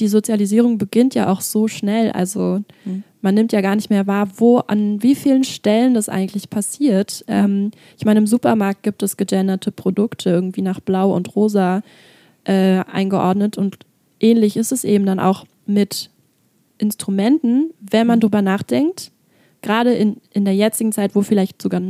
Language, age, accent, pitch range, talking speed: German, 20-39, German, 195-225 Hz, 165 wpm